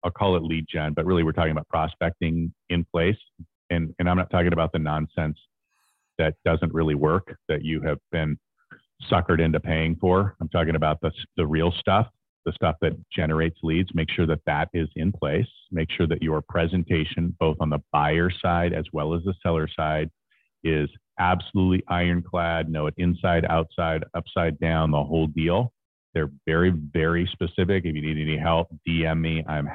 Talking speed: 185 wpm